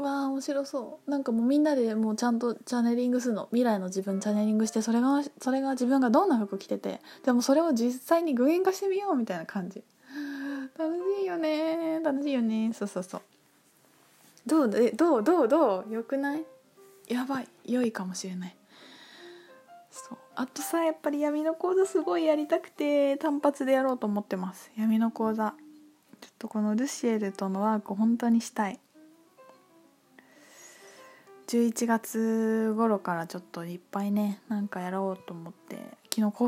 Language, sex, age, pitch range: Japanese, female, 20-39, 210-280 Hz